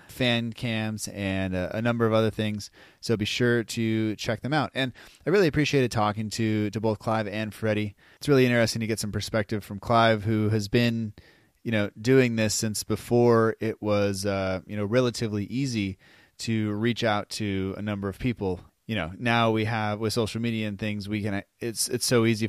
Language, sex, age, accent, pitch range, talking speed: English, male, 30-49, American, 100-115 Hz, 205 wpm